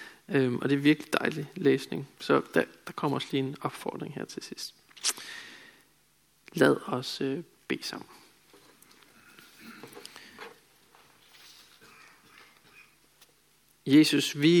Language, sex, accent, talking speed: Danish, male, native, 100 wpm